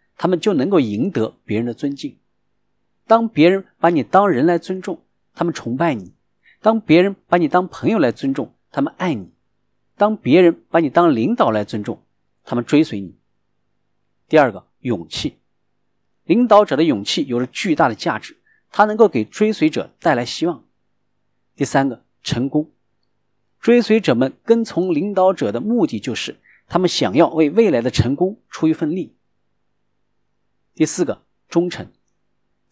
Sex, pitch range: male, 130-220 Hz